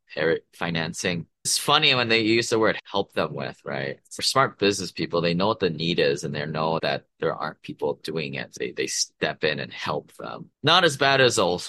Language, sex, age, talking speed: English, male, 20-39, 220 wpm